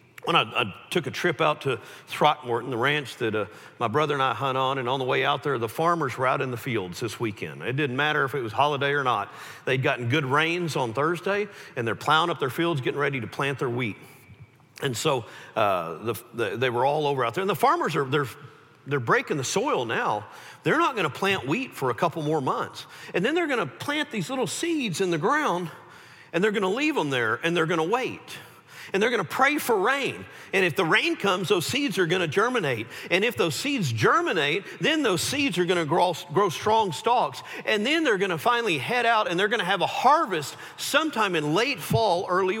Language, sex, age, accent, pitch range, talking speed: English, male, 50-69, American, 140-210 Hz, 240 wpm